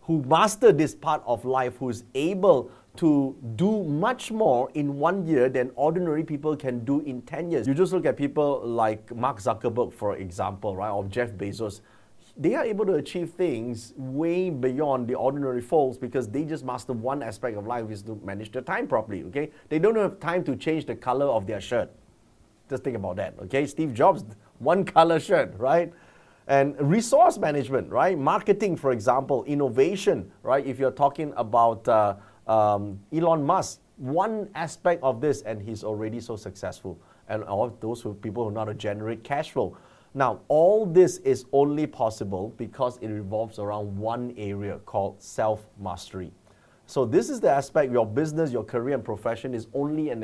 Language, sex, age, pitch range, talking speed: English, male, 30-49, 110-145 Hz, 180 wpm